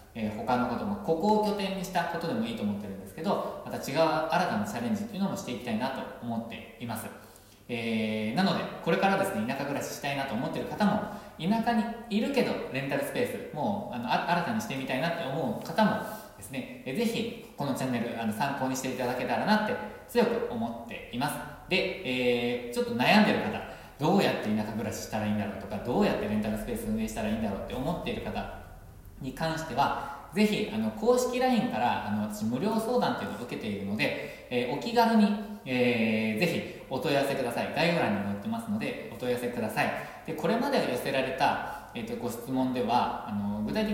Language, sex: Japanese, male